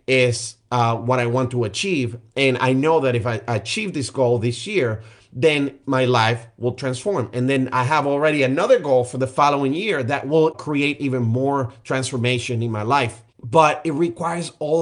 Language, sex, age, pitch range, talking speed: English, male, 30-49, 120-140 Hz, 190 wpm